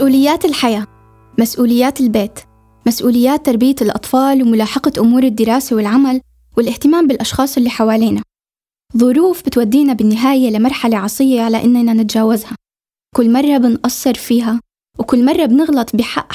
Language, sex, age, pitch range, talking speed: Arabic, female, 10-29, 235-270 Hz, 115 wpm